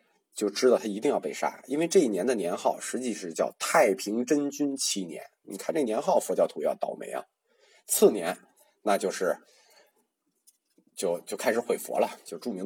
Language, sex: Chinese, male